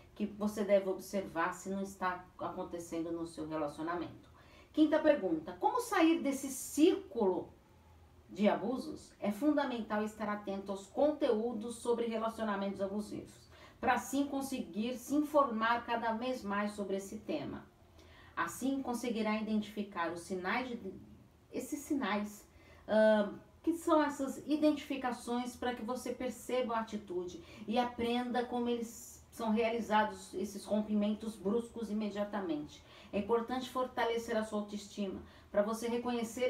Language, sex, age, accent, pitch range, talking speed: Portuguese, female, 40-59, Brazilian, 195-245 Hz, 125 wpm